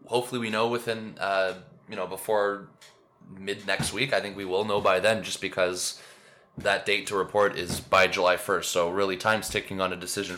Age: 20-39